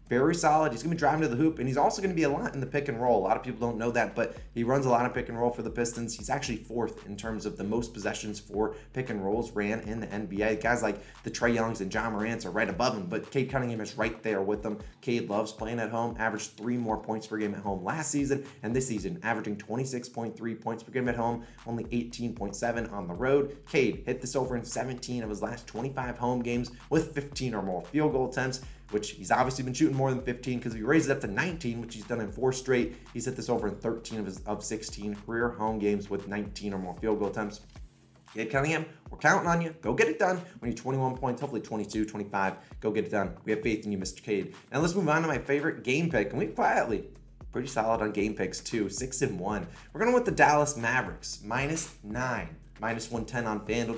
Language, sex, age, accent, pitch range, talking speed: English, male, 20-39, American, 110-135 Hz, 255 wpm